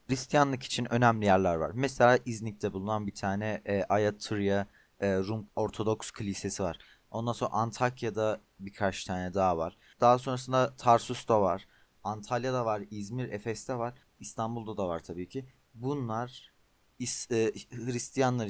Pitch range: 105-130 Hz